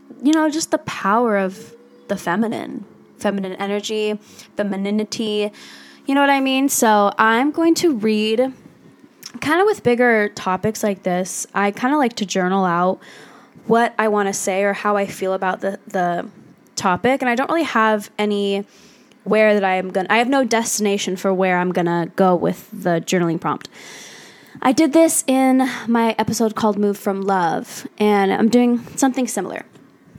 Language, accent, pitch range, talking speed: English, American, 195-245 Hz, 175 wpm